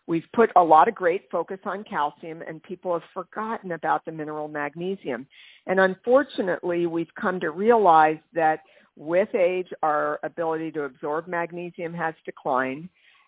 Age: 50-69